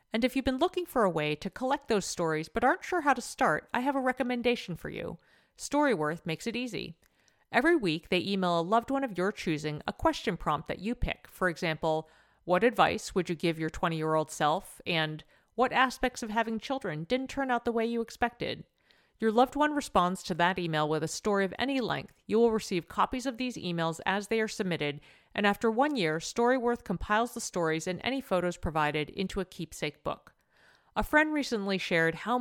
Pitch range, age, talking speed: 165-240 Hz, 40-59, 205 wpm